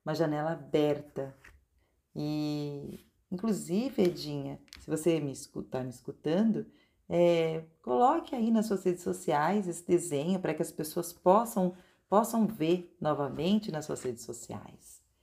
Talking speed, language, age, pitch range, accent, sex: 120 wpm, Portuguese, 40-59, 150-190 Hz, Brazilian, female